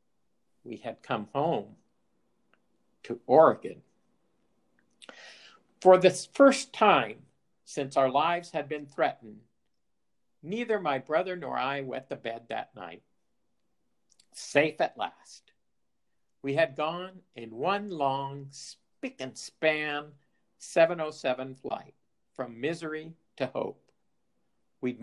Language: English